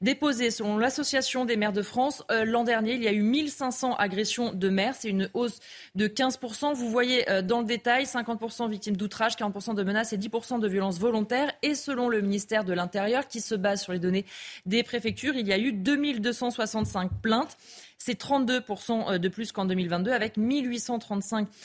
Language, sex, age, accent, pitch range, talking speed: French, female, 20-39, French, 200-245 Hz, 190 wpm